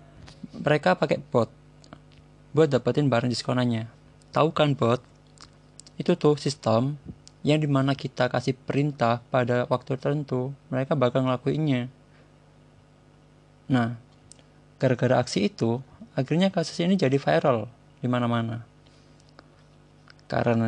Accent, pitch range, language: native, 125-145 Hz, Indonesian